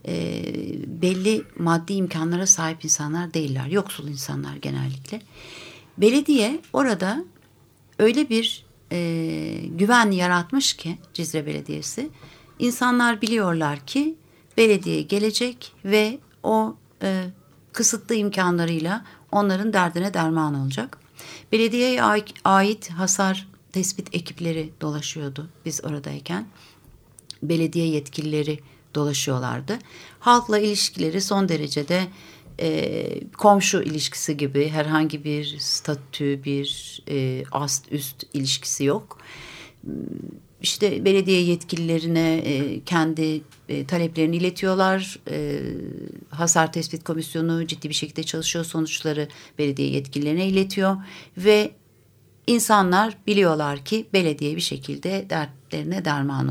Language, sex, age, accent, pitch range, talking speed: Turkish, female, 60-79, native, 145-195 Hz, 90 wpm